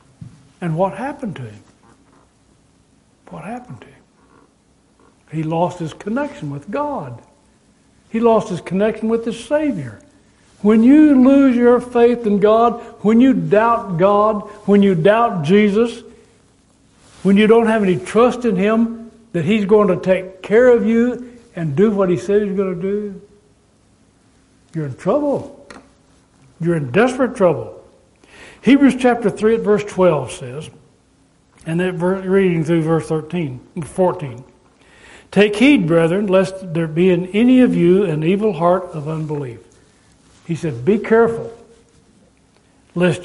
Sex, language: male, English